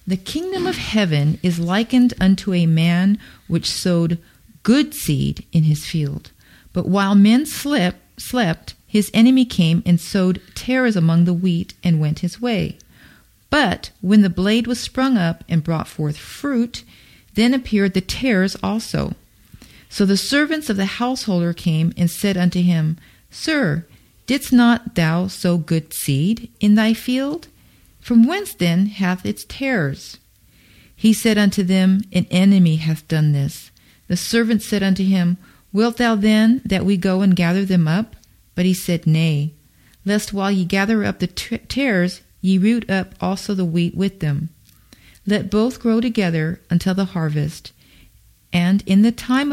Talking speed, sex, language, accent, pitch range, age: 160 wpm, female, English, American, 165-220 Hz, 40-59